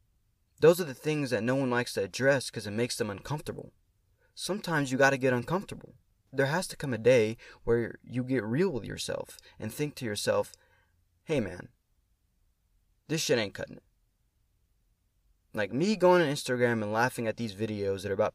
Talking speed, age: 185 wpm, 20-39